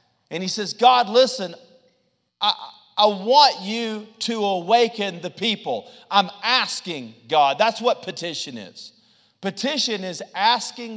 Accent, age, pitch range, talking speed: American, 40-59, 160-230 Hz, 125 wpm